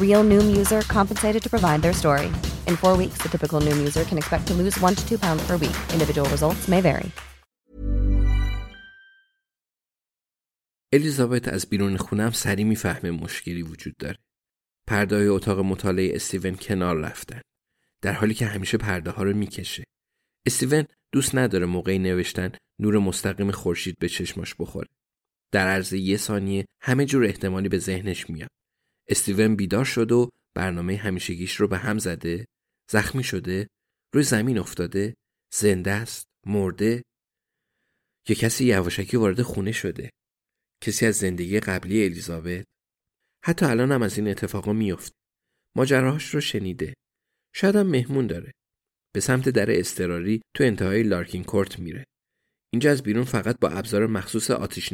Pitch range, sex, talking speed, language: 95-130 Hz, male, 110 wpm, Persian